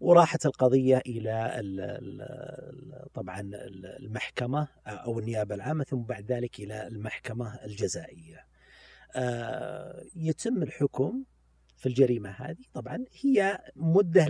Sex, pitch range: male, 120-155 Hz